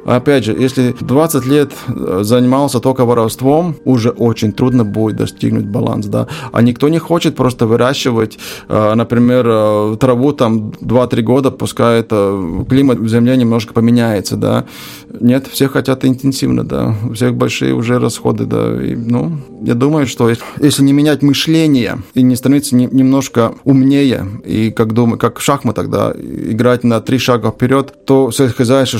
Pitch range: 115-135 Hz